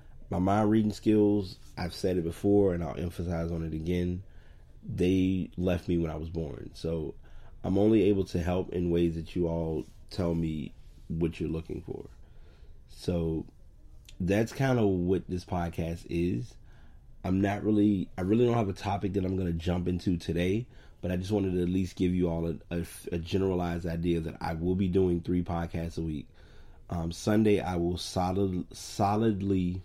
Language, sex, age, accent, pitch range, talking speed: English, male, 30-49, American, 85-95 Hz, 185 wpm